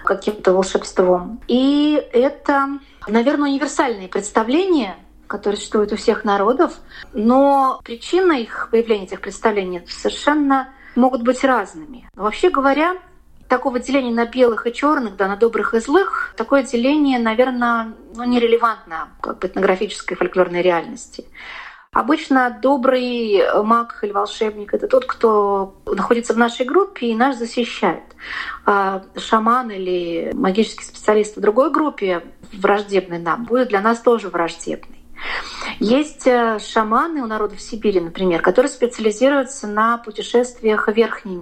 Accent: native